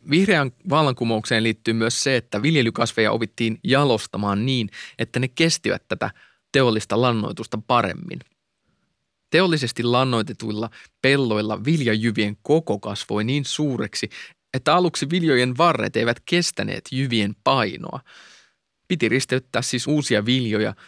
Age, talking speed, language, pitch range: 20-39, 110 wpm, Finnish, 110-150 Hz